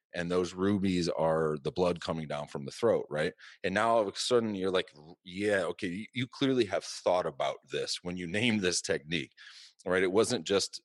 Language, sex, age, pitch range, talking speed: English, male, 30-49, 85-110 Hz, 205 wpm